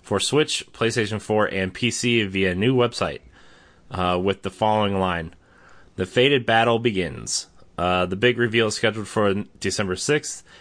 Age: 30-49